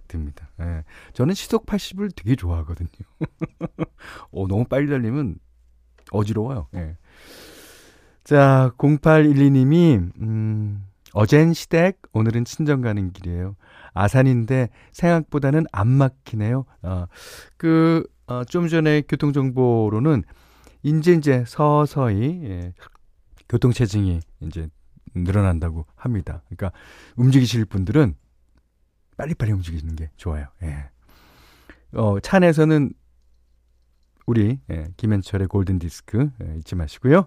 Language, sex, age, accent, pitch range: Korean, male, 40-59, native, 85-140 Hz